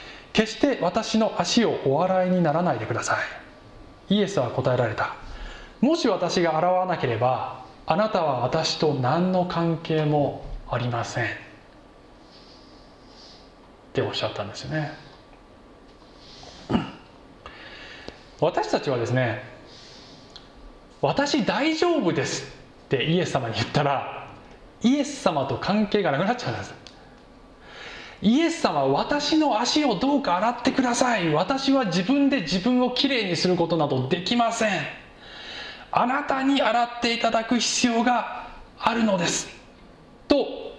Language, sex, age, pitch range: Japanese, male, 20-39, 140-235 Hz